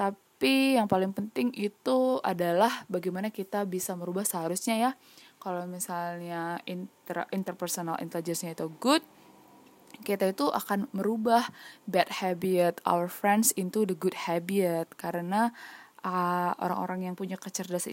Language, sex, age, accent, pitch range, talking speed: Indonesian, female, 10-29, native, 185-230 Hz, 125 wpm